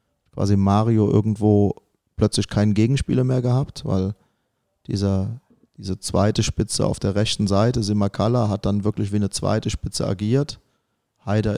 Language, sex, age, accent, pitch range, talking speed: German, male, 30-49, German, 105-115 Hz, 135 wpm